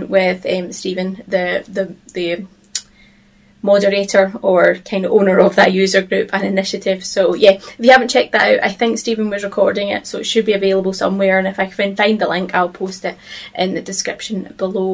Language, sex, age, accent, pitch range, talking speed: English, female, 20-39, British, 190-215 Hz, 205 wpm